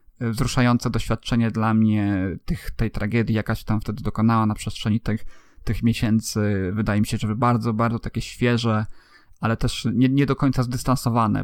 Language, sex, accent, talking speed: Polish, male, native, 165 wpm